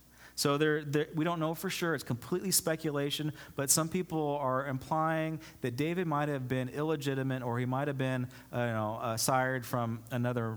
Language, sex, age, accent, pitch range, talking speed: English, male, 30-49, American, 115-170 Hz, 195 wpm